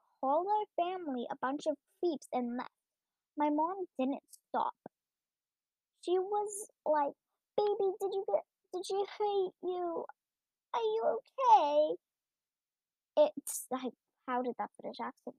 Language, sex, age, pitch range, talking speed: English, male, 10-29, 265-355 Hz, 135 wpm